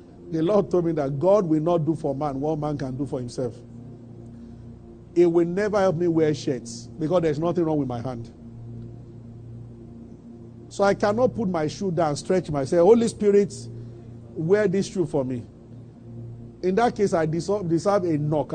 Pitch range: 120-175 Hz